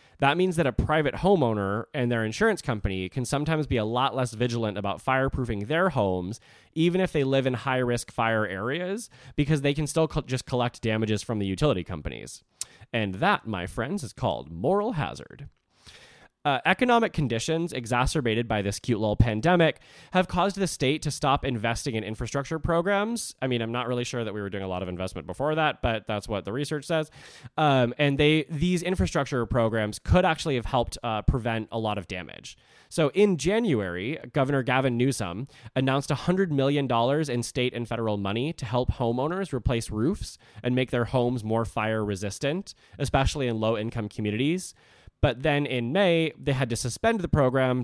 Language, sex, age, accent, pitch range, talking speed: English, male, 20-39, American, 115-150 Hz, 185 wpm